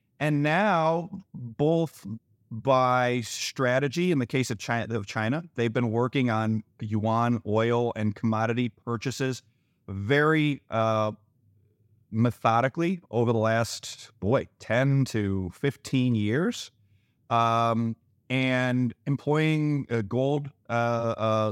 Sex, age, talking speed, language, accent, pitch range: male, 30-49, 105 wpm, English, American, 115-145 Hz